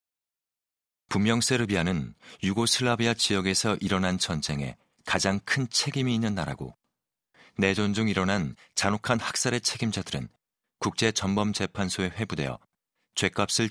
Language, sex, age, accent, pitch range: Korean, male, 40-59, native, 90-110 Hz